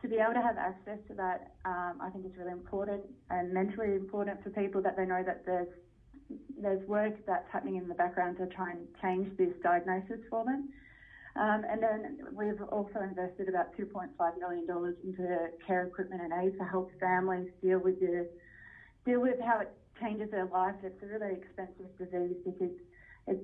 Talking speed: 185 wpm